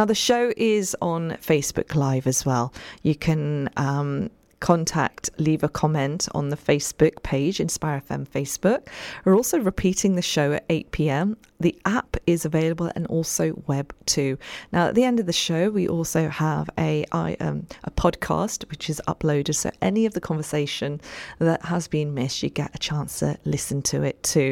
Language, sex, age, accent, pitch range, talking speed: English, female, 40-59, British, 155-190 Hz, 180 wpm